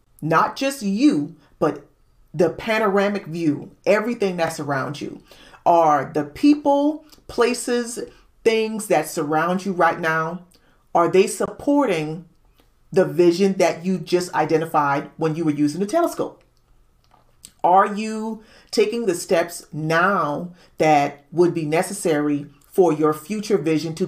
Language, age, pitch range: English, 40-59, 155-205 Hz